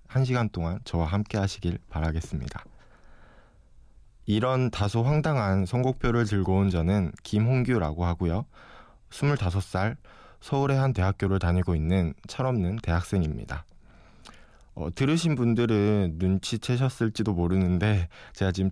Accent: native